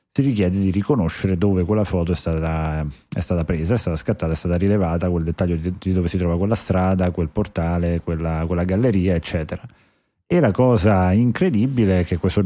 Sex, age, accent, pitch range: male, 30-49, native, 90-105 Hz